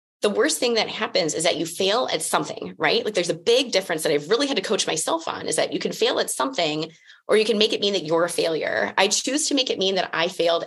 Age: 20-39